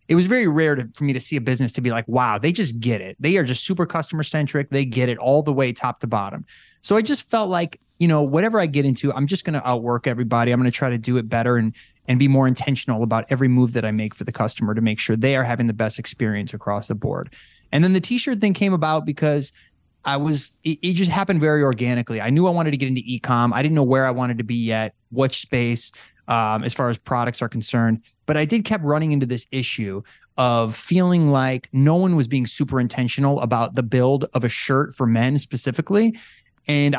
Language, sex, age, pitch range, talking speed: English, male, 20-39, 120-155 Hz, 250 wpm